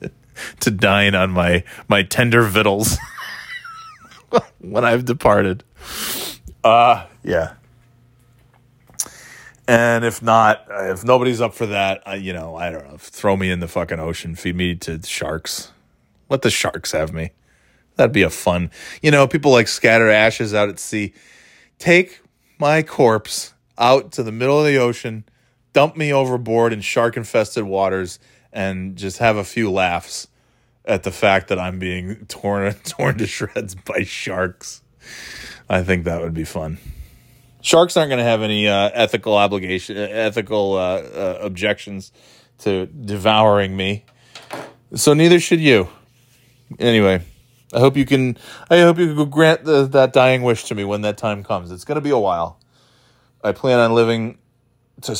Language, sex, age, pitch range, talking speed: English, male, 20-39, 95-125 Hz, 160 wpm